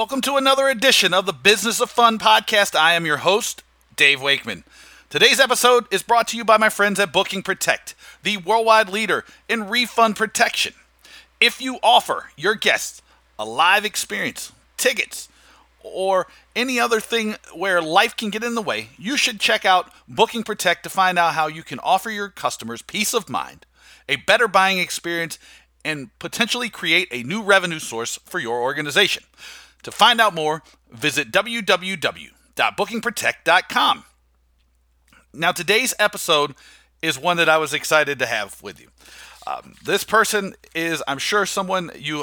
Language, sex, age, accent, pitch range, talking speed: English, male, 40-59, American, 155-215 Hz, 160 wpm